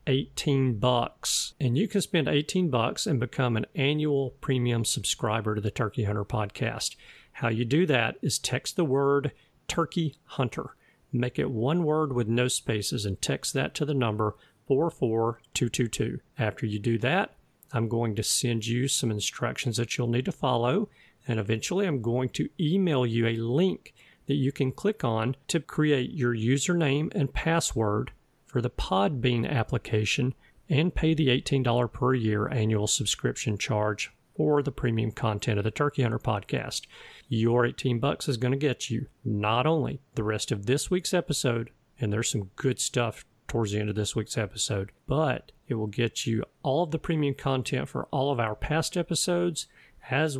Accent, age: American, 40-59